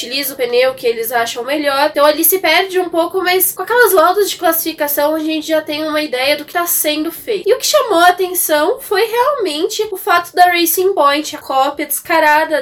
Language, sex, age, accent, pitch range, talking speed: Portuguese, female, 10-29, Brazilian, 285-370 Hz, 220 wpm